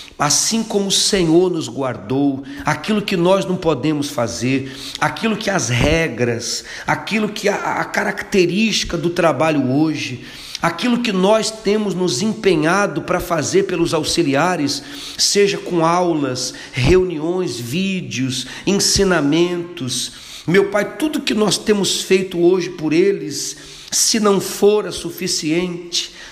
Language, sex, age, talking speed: Portuguese, male, 50-69, 125 wpm